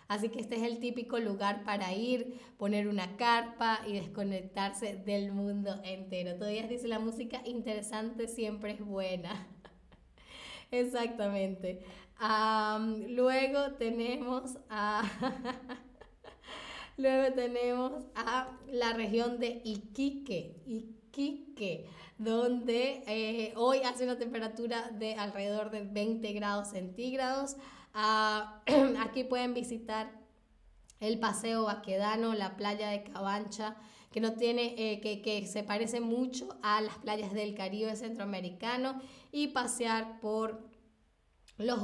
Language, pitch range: Spanish, 205-245 Hz